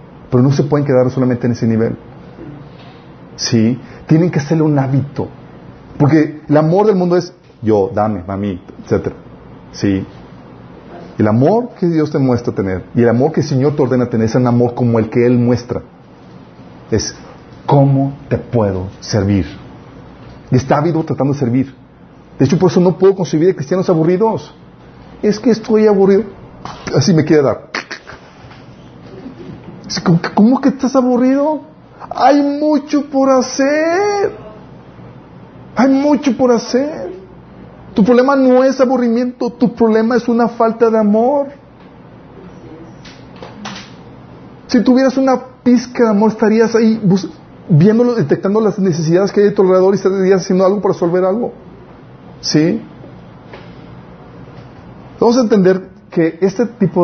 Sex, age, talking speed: male, 40-59, 140 wpm